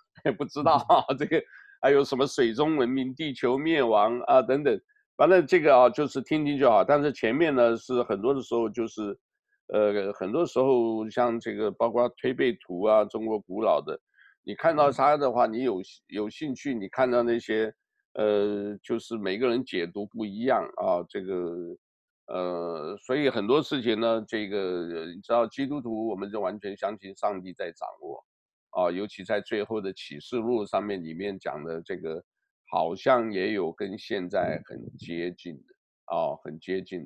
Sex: male